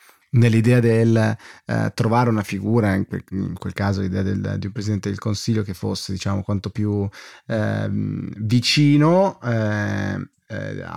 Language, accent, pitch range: Italian, native, 110-135 Hz